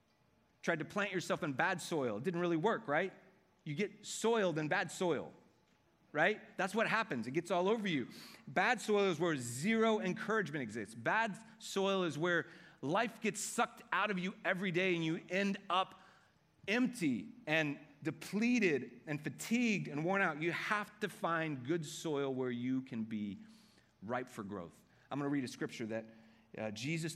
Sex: male